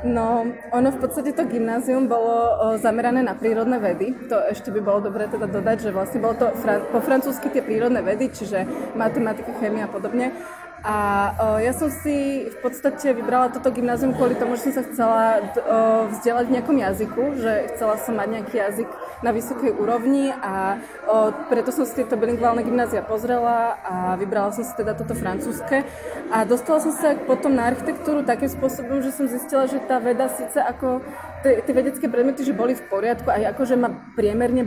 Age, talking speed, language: 20-39, 185 wpm, Slovak